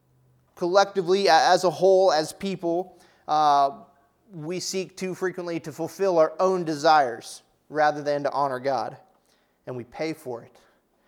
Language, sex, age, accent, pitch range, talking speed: English, male, 30-49, American, 135-175 Hz, 140 wpm